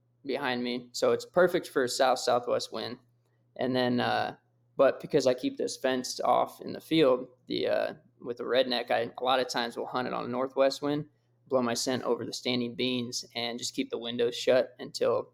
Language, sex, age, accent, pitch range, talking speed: English, male, 20-39, American, 120-145 Hz, 210 wpm